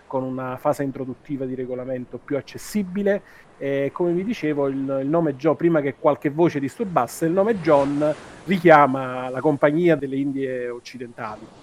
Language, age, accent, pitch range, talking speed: Italian, 30-49, native, 125-155 Hz, 155 wpm